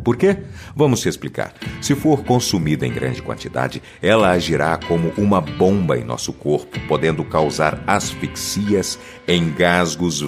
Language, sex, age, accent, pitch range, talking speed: Portuguese, male, 50-69, Brazilian, 80-120 Hz, 135 wpm